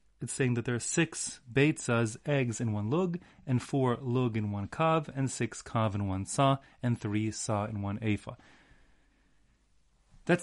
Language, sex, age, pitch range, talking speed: English, male, 30-49, 105-130 Hz, 175 wpm